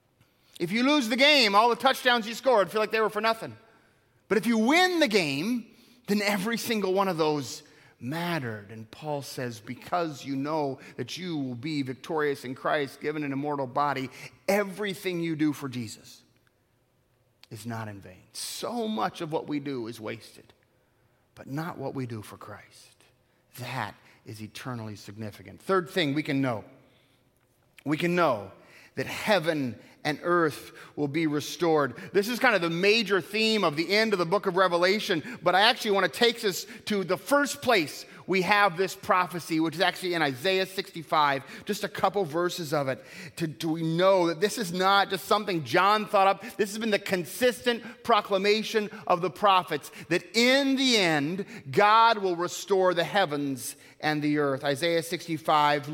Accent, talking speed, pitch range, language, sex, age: American, 180 wpm, 135-200 Hz, English, male, 30-49